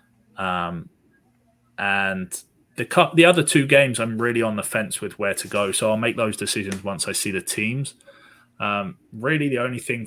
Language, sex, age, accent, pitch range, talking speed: English, male, 20-39, British, 105-120 Hz, 190 wpm